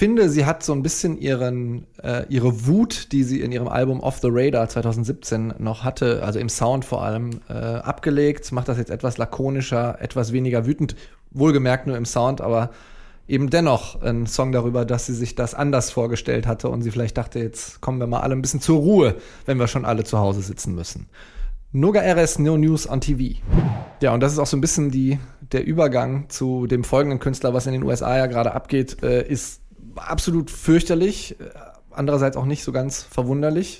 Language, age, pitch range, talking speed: German, 20-39, 120-145 Hz, 195 wpm